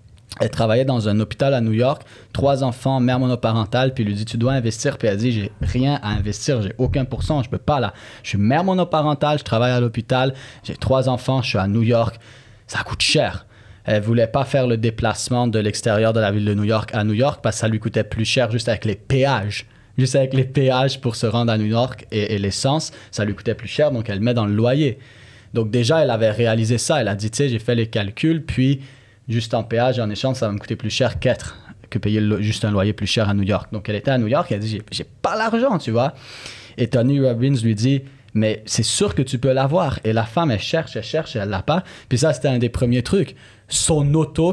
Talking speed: 265 wpm